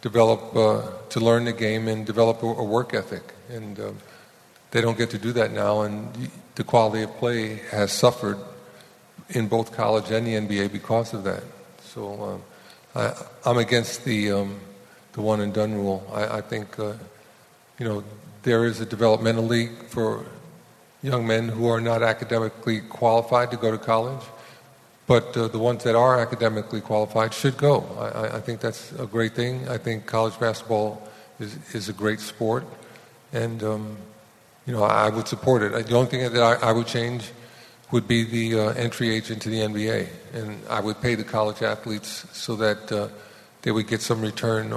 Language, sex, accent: English, male, American